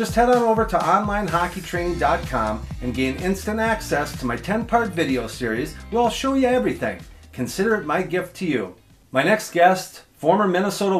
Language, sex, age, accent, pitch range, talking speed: English, male, 40-59, American, 135-195 Hz, 170 wpm